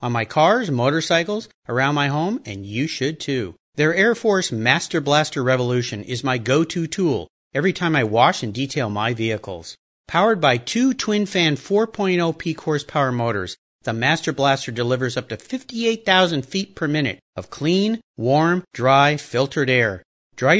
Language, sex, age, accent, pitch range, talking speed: English, male, 40-59, American, 130-185 Hz, 155 wpm